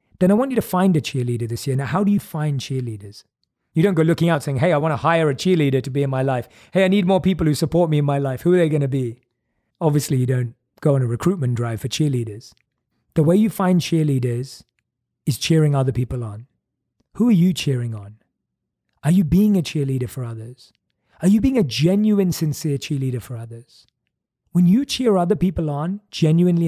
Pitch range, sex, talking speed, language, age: 130-185 Hz, male, 225 wpm, English, 30-49